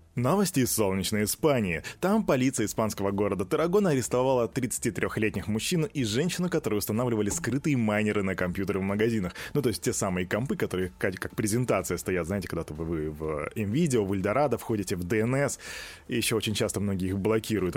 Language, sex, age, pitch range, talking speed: Russian, male, 20-39, 100-140 Hz, 165 wpm